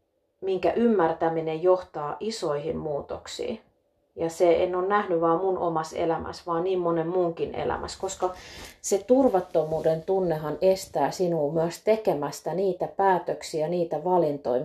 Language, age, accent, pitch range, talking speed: Finnish, 30-49, native, 160-190 Hz, 125 wpm